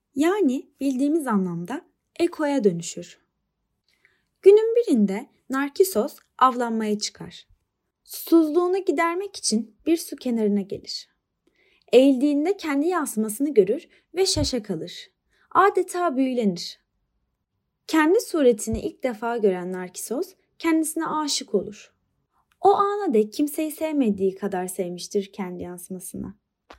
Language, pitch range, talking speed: Turkish, 215-360 Hz, 95 wpm